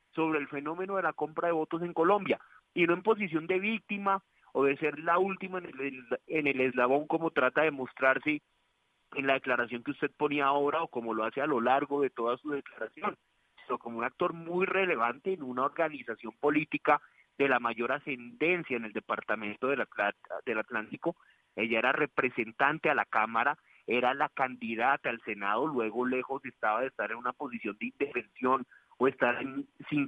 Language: Spanish